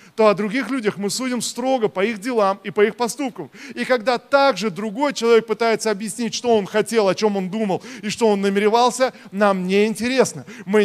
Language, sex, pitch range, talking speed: Russian, male, 200-245 Hz, 195 wpm